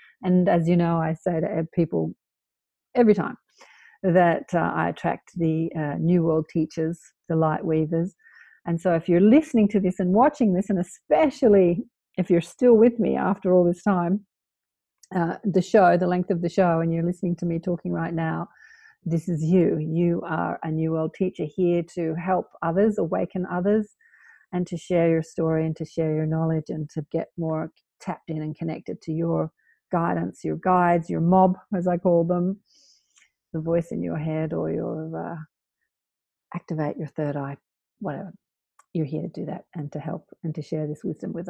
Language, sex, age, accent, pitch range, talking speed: English, female, 50-69, Australian, 160-190 Hz, 190 wpm